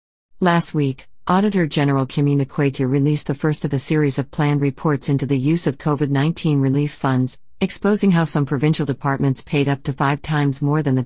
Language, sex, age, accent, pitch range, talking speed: English, female, 50-69, American, 135-155 Hz, 190 wpm